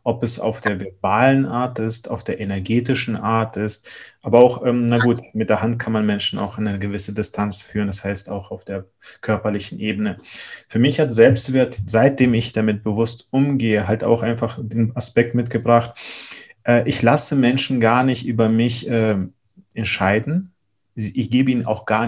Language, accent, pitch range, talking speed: German, German, 110-130 Hz, 180 wpm